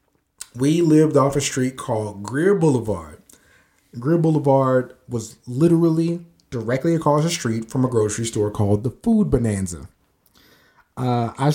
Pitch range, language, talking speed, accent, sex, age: 110-140 Hz, English, 135 wpm, American, male, 30-49